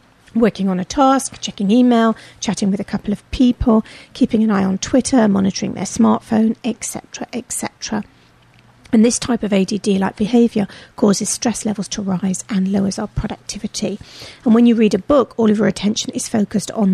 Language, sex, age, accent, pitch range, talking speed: English, female, 40-59, British, 195-230 Hz, 175 wpm